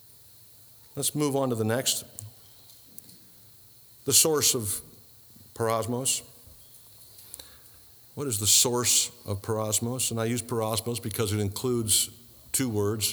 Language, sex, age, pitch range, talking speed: English, male, 50-69, 110-135 Hz, 115 wpm